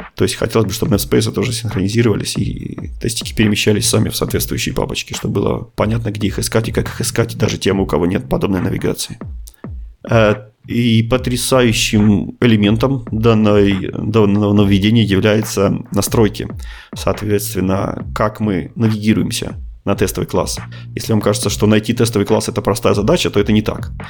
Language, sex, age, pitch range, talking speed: Russian, male, 30-49, 100-115 Hz, 150 wpm